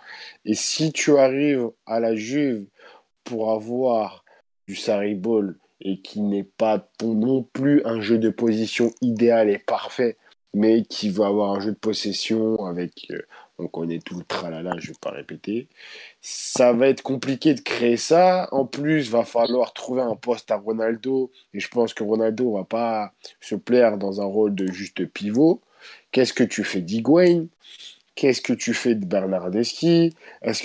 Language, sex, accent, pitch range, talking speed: French, male, French, 110-140 Hz, 170 wpm